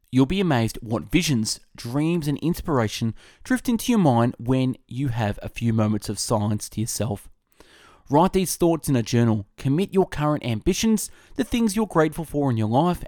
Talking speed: 185 wpm